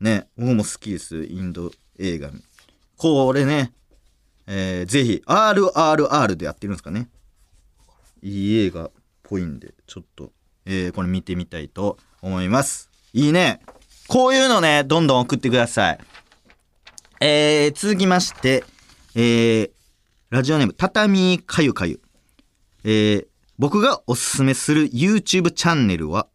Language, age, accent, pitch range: Japanese, 40-59, native, 95-150 Hz